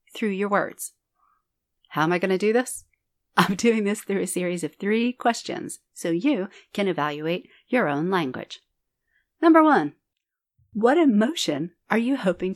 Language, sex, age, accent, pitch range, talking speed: English, female, 40-59, American, 165-235 Hz, 160 wpm